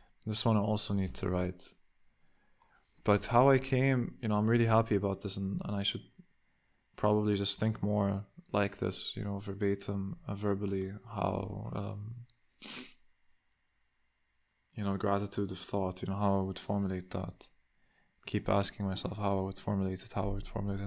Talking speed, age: 170 wpm, 20-39